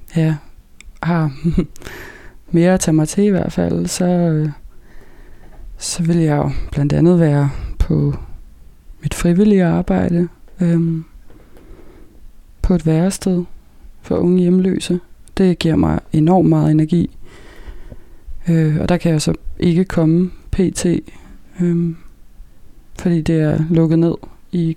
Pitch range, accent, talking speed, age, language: 155-180 Hz, native, 125 wpm, 20-39, Danish